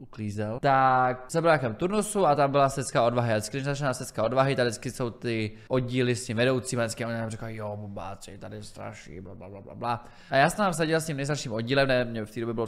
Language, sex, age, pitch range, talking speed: English, male, 20-39, 115-145 Hz, 215 wpm